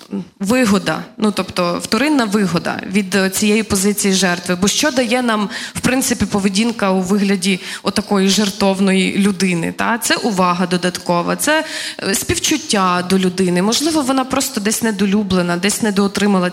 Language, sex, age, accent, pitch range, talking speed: Ukrainian, female, 20-39, native, 190-245 Hz, 130 wpm